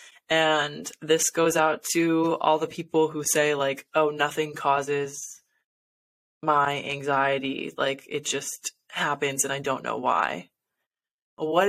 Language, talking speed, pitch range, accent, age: English, 135 wpm, 145-170 Hz, American, 20-39